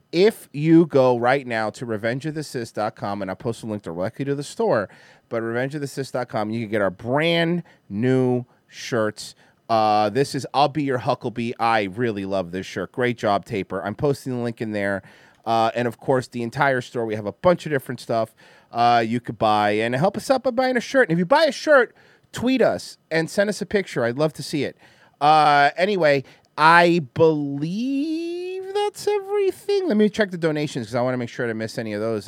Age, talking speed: 30-49, 210 wpm